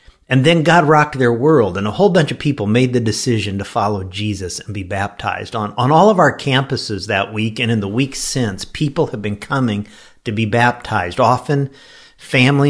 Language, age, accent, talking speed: English, 50-69, American, 205 wpm